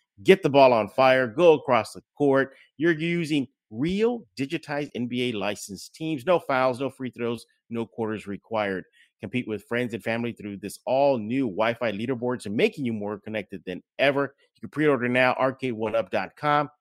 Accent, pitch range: American, 110-140 Hz